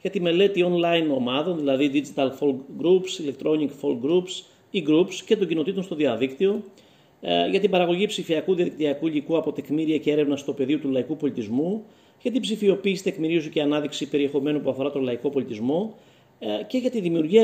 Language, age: Greek, 30-49